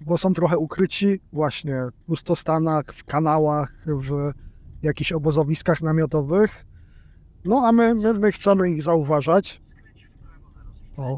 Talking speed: 115 wpm